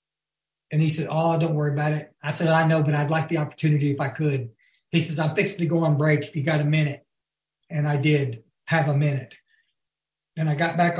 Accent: American